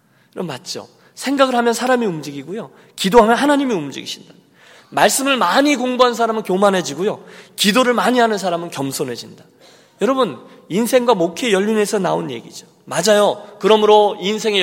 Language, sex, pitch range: Korean, male, 140-210 Hz